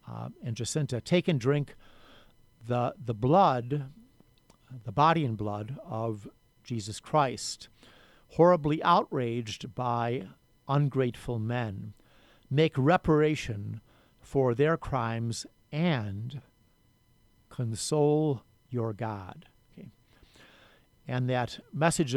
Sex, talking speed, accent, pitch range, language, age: male, 90 wpm, American, 110-145 Hz, English, 50-69